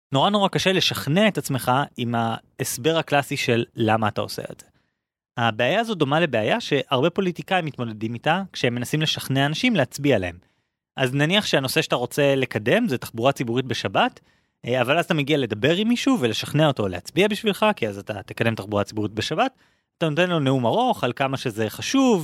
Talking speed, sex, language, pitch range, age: 180 wpm, male, Hebrew, 120-165 Hz, 20-39